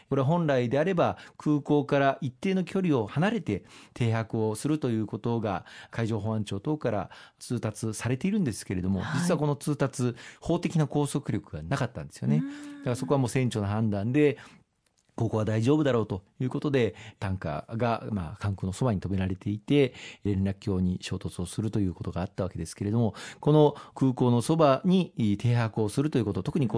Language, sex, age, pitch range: Japanese, male, 40-59, 100-145 Hz